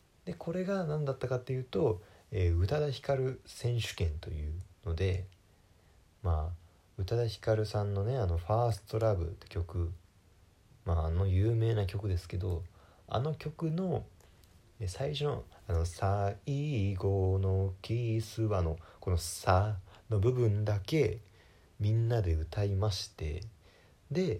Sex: male